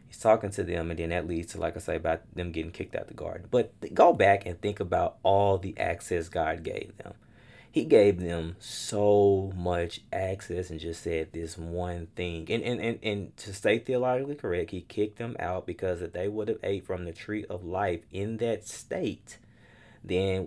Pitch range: 85-110 Hz